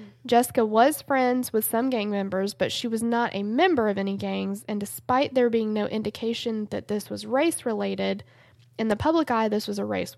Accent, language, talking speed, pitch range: American, English, 200 wpm, 195-235 Hz